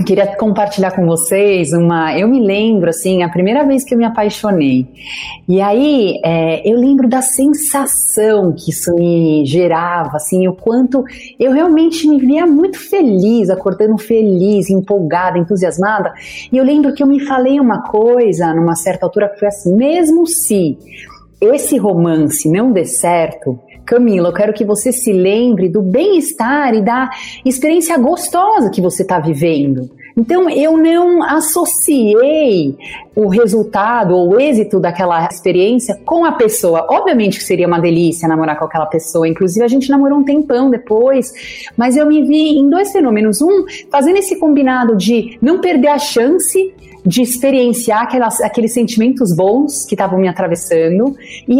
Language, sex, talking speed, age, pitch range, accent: Portuguese, female, 160 wpm, 40-59, 180-270 Hz, Brazilian